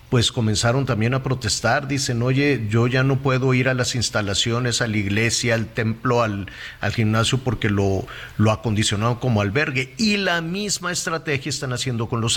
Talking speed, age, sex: 180 wpm, 50-69, male